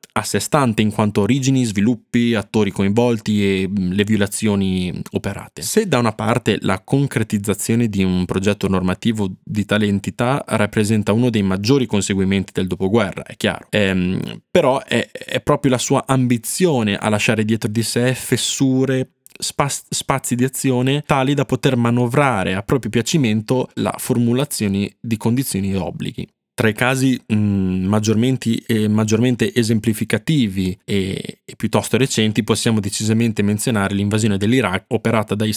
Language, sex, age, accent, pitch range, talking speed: Italian, male, 20-39, native, 105-120 Hz, 140 wpm